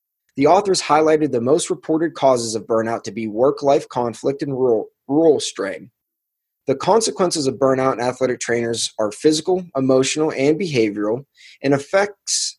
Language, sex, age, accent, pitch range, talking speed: English, male, 20-39, American, 125-165 Hz, 150 wpm